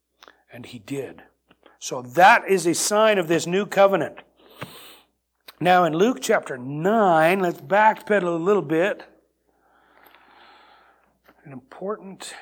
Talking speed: 115 wpm